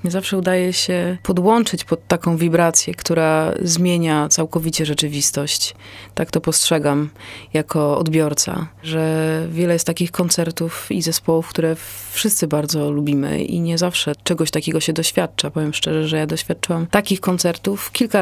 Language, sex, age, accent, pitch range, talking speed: Polish, female, 30-49, native, 155-205 Hz, 140 wpm